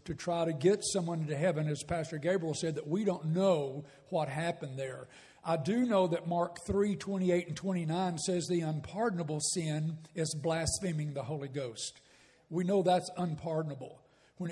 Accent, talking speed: American, 170 wpm